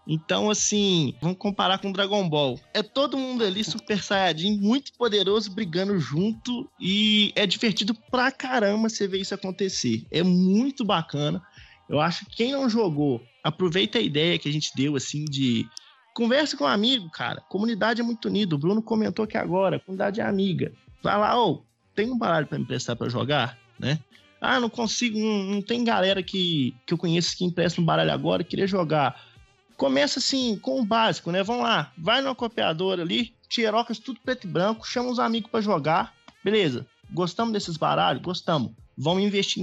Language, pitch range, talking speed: Portuguese, 175-230 Hz, 185 wpm